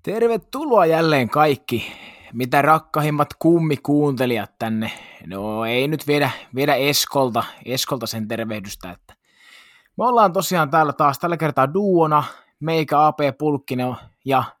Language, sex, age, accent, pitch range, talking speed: Finnish, male, 20-39, native, 125-160 Hz, 110 wpm